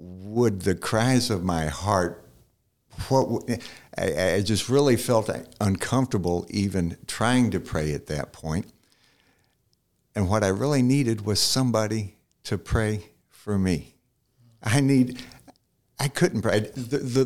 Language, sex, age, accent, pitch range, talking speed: English, male, 60-79, American, 100-135 Hz, 135 wpm